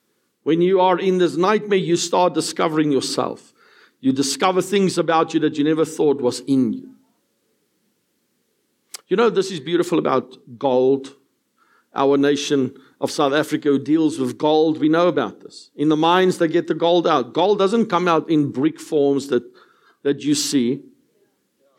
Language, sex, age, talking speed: English, male, 50-69, 170 wpm